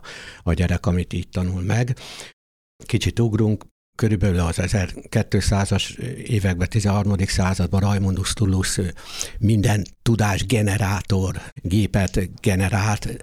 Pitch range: 90-110 Hz